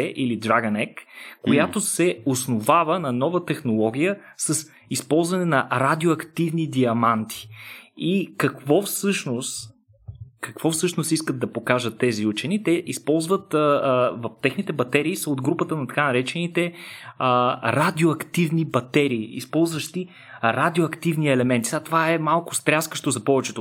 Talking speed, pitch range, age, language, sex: 125 wpm, 125-160 Hz, 20-39, Bulgarian, male